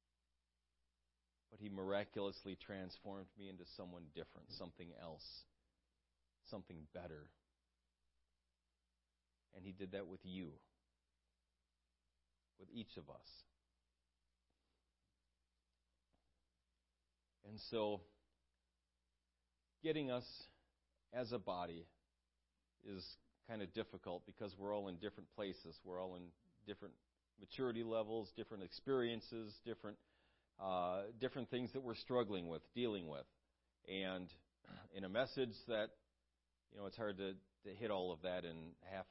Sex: male